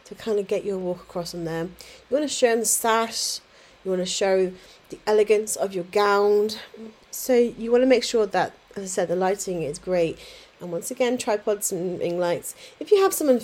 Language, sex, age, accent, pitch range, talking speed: English, female, 30-49, British, 195-245 Hz, 220 wpm